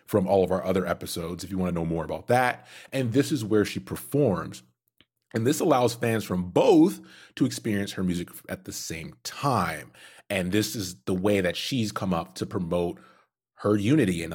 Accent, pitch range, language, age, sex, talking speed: American, 90-120 Hz, English, 30-49, male, 200 wpm